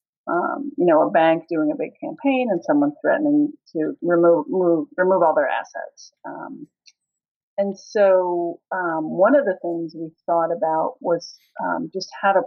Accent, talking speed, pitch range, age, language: American, 170 wpm, 185-300 Hz, 40-59, English